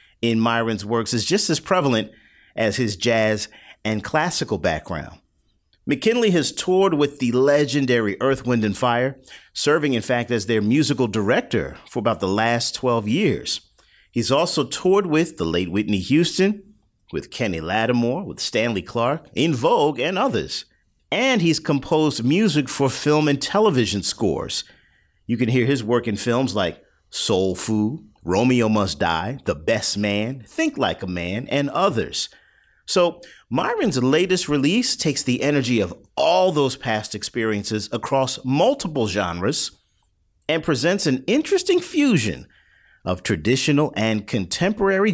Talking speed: 145 wpm